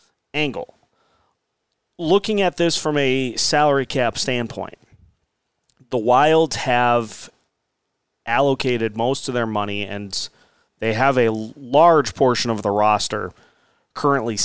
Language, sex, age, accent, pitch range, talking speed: English, male, 30-49, American, 115-140 Hz, 110 wpm